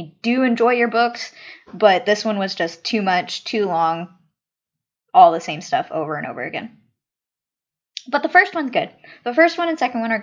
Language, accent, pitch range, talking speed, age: English, American, 190-255 Hz, 195 wpm, 10-29